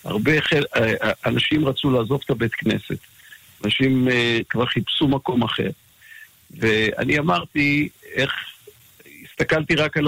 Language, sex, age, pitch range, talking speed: Hebrew, male, 50-69, 115-150 Hz, 115 wpm